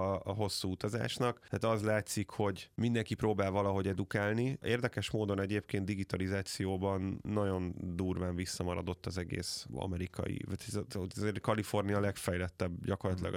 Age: 20-39